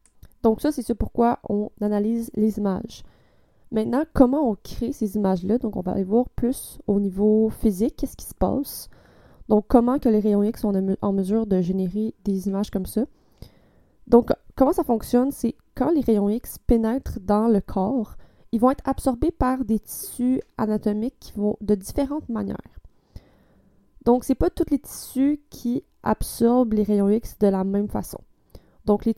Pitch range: 205-245 Hz